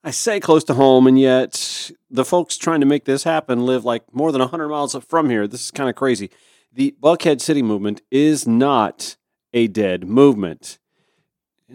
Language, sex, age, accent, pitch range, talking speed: English, male, 40-59, American, 110-155 Hz, 195 wpm